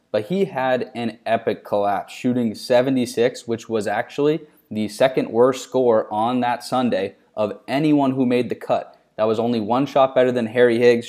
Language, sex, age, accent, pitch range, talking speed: English, male, 20-39, American, 110-130 Hz, 180 wpm